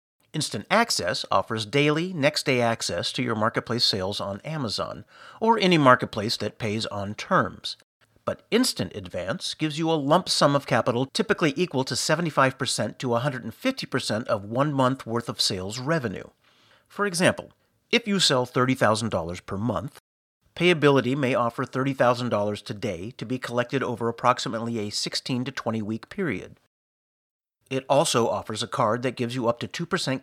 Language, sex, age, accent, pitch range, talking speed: English, male, 50-69, American, 110-145 Hz, 155 wpm